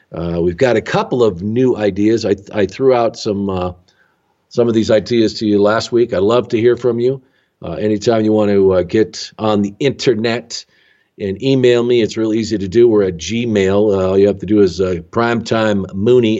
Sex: male